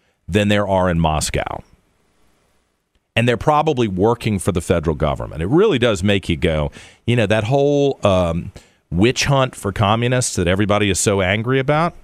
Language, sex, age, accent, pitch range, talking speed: English, male, 40-59, American, 90-135 Hz, 170 wpm